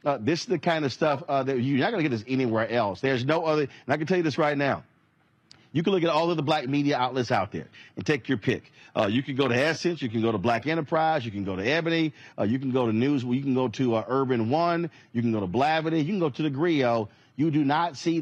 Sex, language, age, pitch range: male, English, 40-59, 120-145 Hz